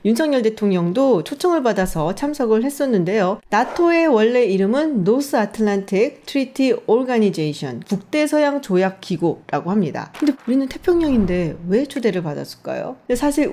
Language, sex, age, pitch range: Korean, female, 40-59, 190-290 Hz